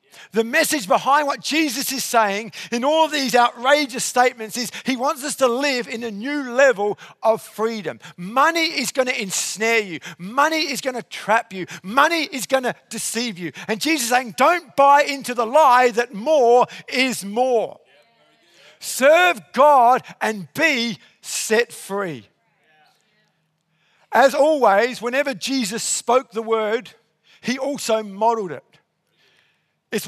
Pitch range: 220-280 Hz